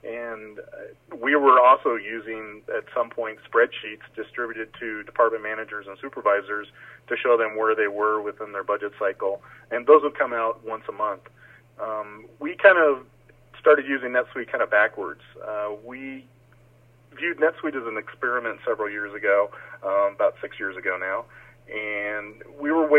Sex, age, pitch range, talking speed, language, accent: male, 40-59, 110-145 Hz, 160 wpm, English, American